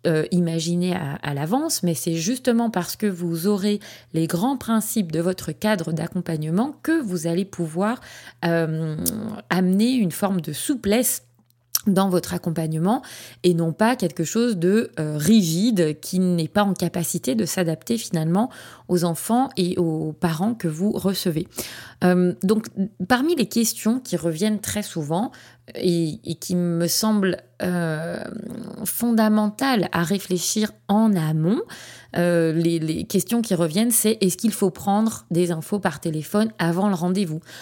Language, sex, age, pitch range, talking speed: French, female, 30-49, 170-215 Hz, 150 wpm